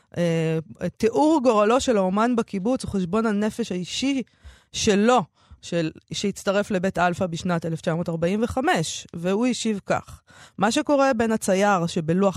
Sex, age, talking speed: female, 20-39, 120 wpm